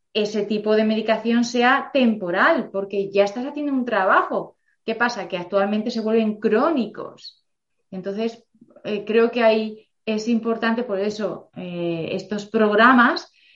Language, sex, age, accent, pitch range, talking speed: Spanish, female, 30-49, Spanish, 185-235 Hz, 135 wpm